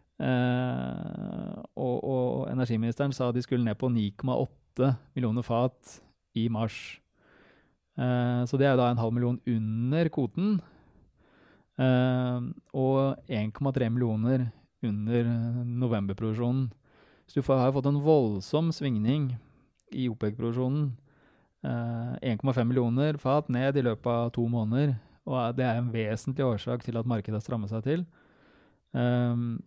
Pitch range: 115-130 Hz